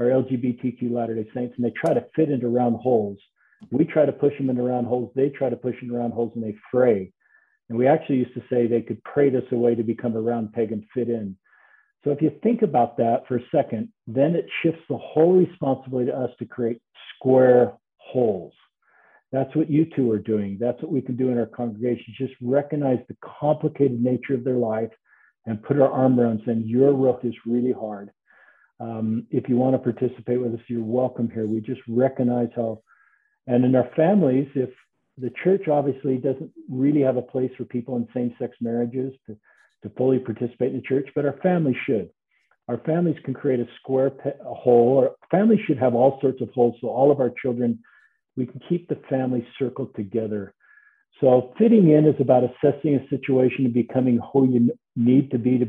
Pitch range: 120-140 Hz